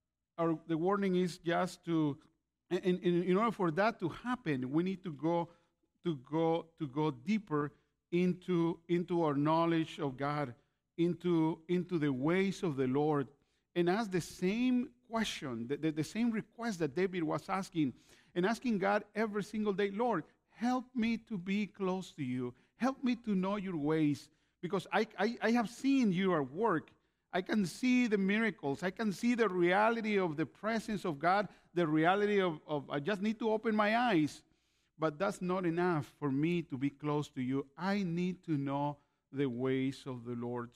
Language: English